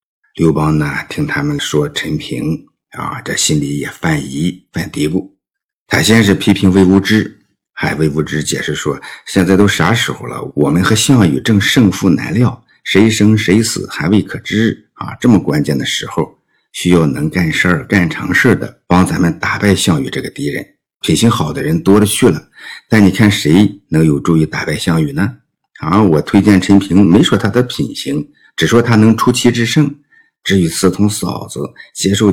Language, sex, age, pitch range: Chinese, male, 50-69, 90-120 Hz